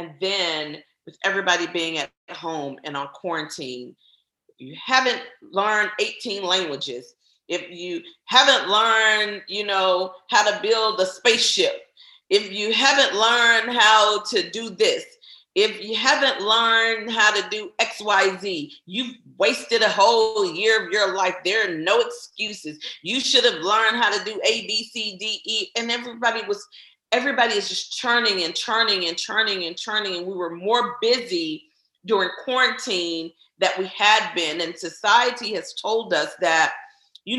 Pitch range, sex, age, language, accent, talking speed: 195-255 Hz, female, 40-59, English, American, 160 wpm